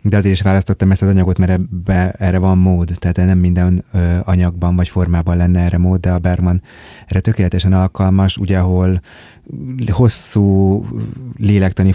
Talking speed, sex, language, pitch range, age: 150 wpm, male, Hungarian, 90-100 Hz, 30-49